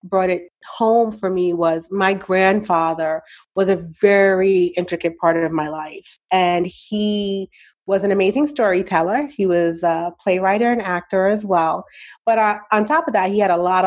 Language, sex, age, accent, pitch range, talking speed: English, female, 30-49, American, 175-220 Hz, 170 wpm